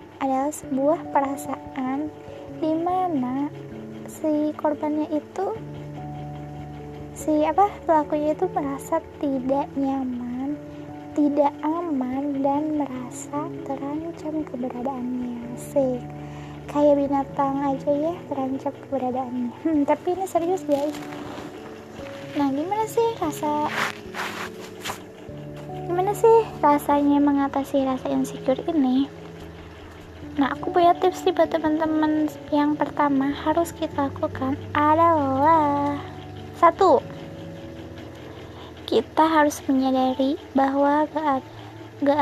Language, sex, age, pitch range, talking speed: Indonesian, female, 10-29, 265-305 Hz, 85 wpm